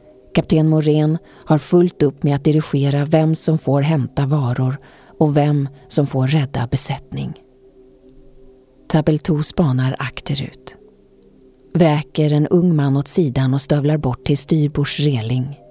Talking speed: 130 wpm